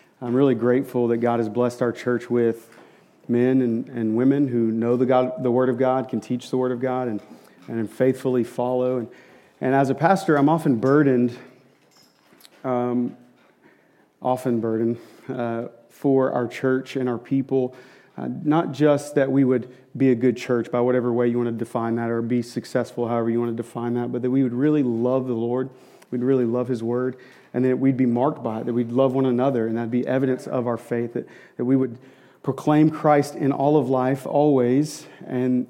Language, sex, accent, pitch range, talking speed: English, male, American, 120-135 Hz, 205 wpm